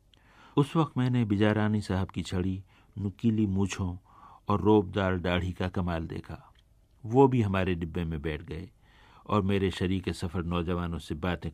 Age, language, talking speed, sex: 50-69, Hindi, 150 wpm, male